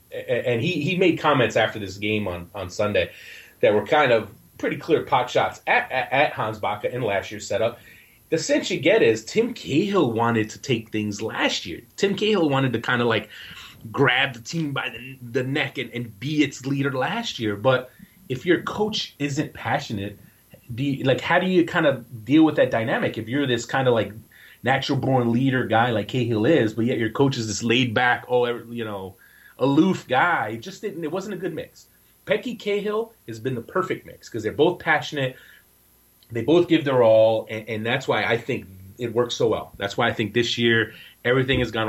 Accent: American